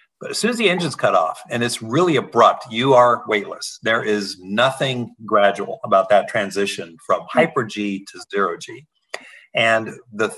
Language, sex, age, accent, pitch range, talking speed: English, male, 50-69, American, 100-125 Hz, 160 wpm